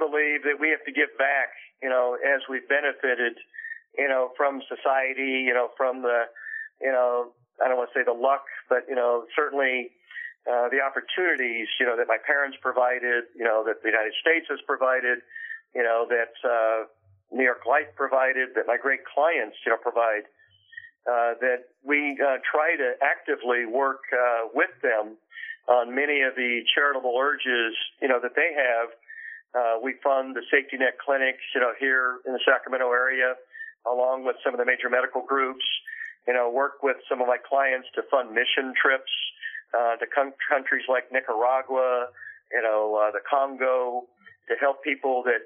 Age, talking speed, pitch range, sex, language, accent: 50-69, 180 wpm, 125-150 Hz, male, English, American